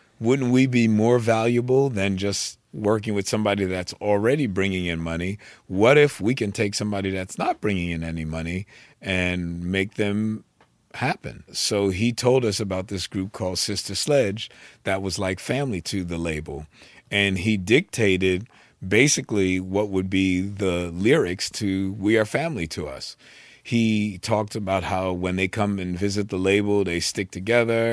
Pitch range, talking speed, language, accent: 95-110 Hz, 165 wpm, English, American